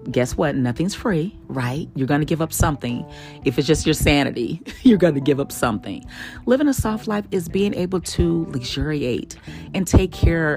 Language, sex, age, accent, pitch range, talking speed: English, female, 30-49, American, 135-215 Hz, 195 wpm